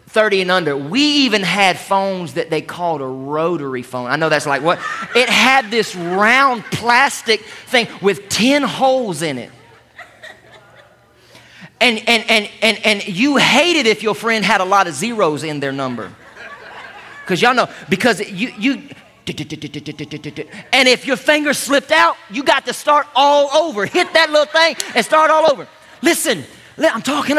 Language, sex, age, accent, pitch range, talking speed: English, male, 30-49, American, 160-260 Hz, 170 wpm